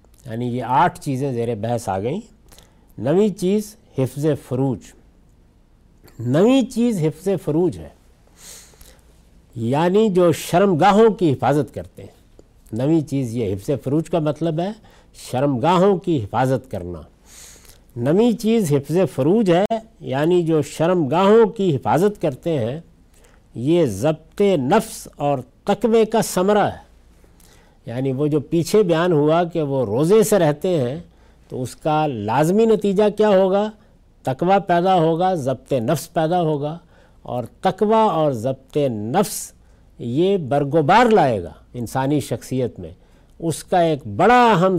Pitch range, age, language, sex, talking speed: 125-185 Hz, 60-79, Urdu, male, 135 wpm